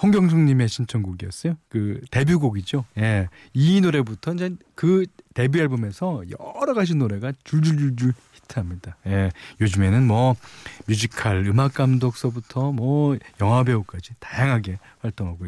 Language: Korean